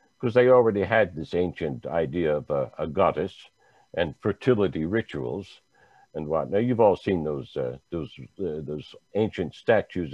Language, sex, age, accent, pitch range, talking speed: English, male, 60-79, American, 90-120 Hz, 160 wpm